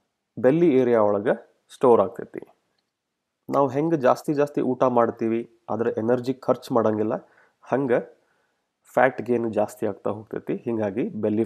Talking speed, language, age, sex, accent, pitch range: 120 wpm, Kannada, 30-49, male, native, 110-125 Hz